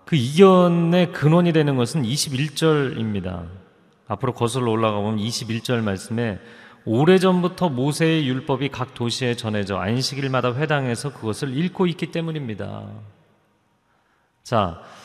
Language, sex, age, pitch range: Korean, male, 30-49, 120-175 Hz